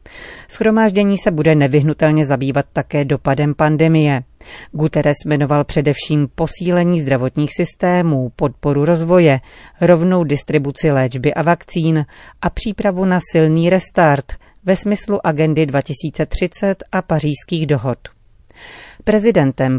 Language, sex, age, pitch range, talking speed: Czech, female, 30-49, 145-175 Hz, 105 wpm